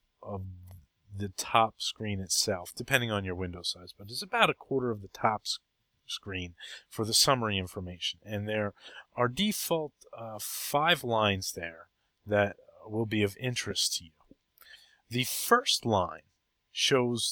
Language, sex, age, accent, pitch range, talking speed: English, male, 30-49, American, 95-115 Hz, 145 wpm